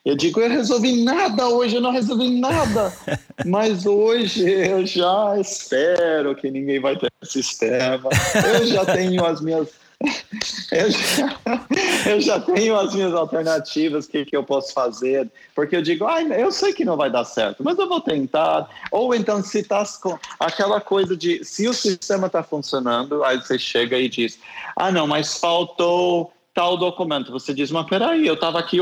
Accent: Brazilian